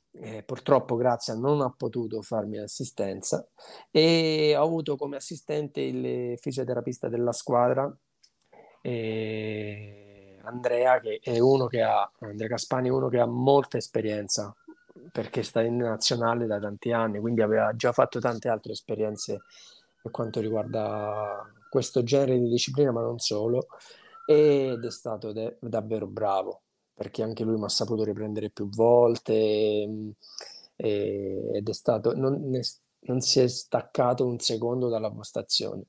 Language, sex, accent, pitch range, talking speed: Italian, male, native, 110-125 Hz, 140 wpm